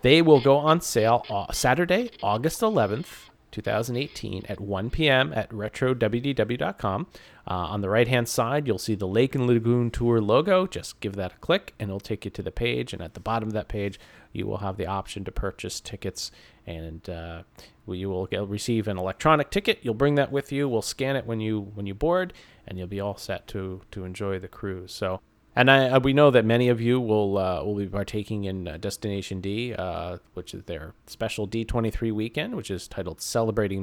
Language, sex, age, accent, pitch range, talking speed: English, male, 30-49, American, 95-120 Hz, 205 wpm